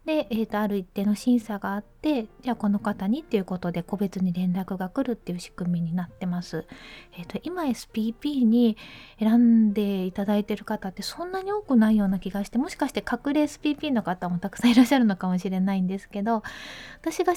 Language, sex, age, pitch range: Japanese, female, 20-39, 195-260 Hz